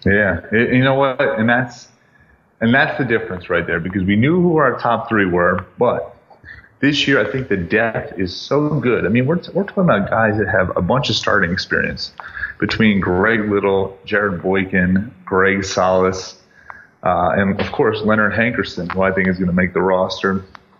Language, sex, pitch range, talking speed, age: English, male, 95-115 Hz, 195 wpm, 30-49